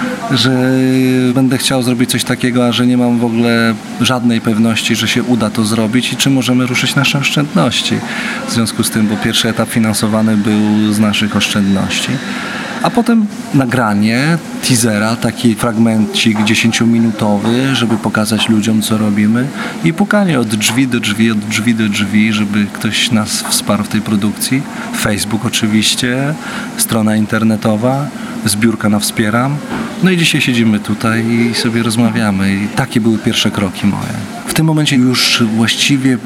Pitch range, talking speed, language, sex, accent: 110-125 Hz, 150 wpm, Polish, male, native